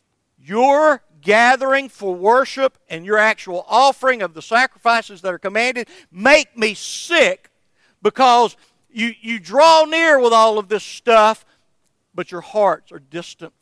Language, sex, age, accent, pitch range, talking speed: English, male, 50-69, American, 170-240 Hz, 140 wpm